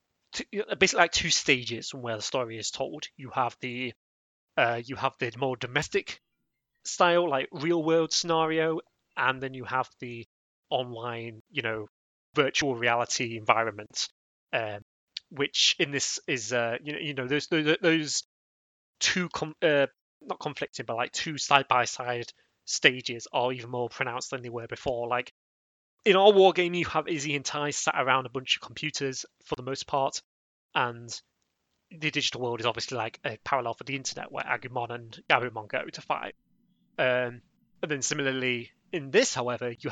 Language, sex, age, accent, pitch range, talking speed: English, male, 30-49, British, 120-150 Hz, 170 wpm